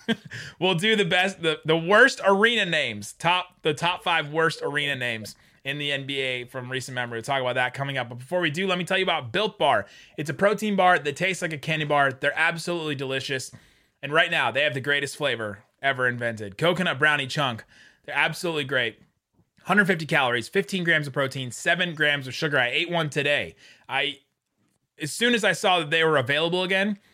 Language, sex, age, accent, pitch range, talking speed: English, male, 30-49, American, 135-175 Hz, 205 wpm